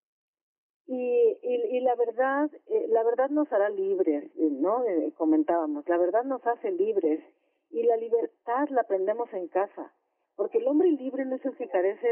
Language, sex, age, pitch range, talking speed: Spanish, female, 50-69, 180-290 Hz, 175 wpm